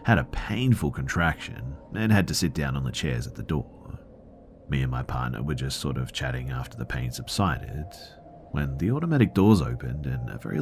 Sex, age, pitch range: male, 40-59, 70-105 Hz